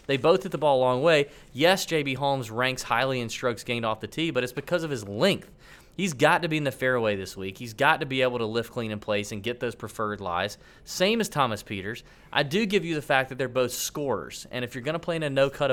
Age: 30-49